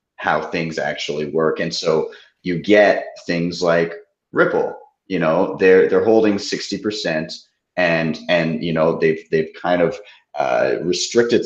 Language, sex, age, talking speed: English, male, 30-49, 140 wpm